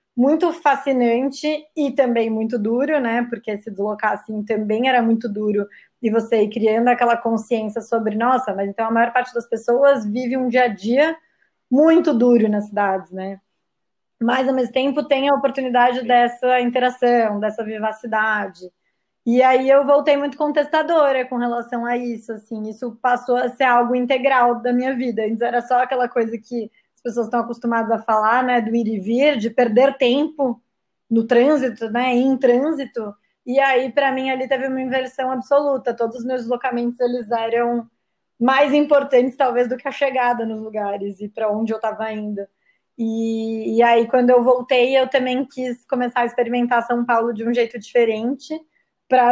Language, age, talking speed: Portuguese, 20-39, 175 wpm